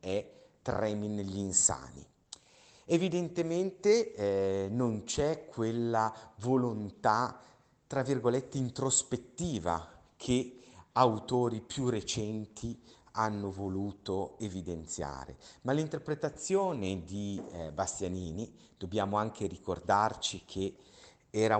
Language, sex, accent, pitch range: Italian, male, native, 95-130 Hz